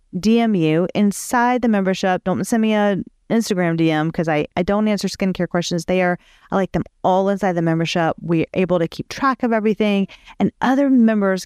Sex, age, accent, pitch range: female, 40-59, American, 180-225 Hz